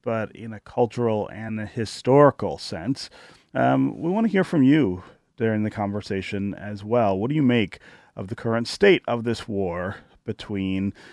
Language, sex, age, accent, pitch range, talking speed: English, male, 30-49, American, 100-135 Hz, 175 wpm